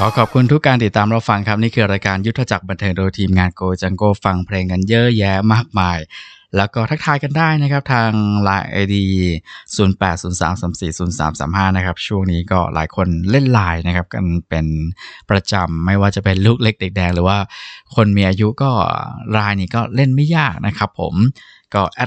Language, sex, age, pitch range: Thai, male, 20-39, 95-110 Hz